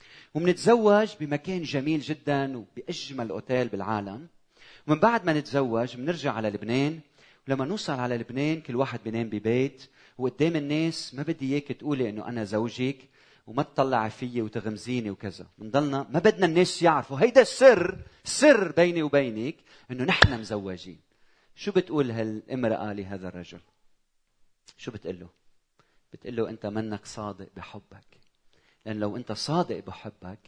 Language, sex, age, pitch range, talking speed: Arabic, male, 40-59, 115-180 Hz, 135 wpm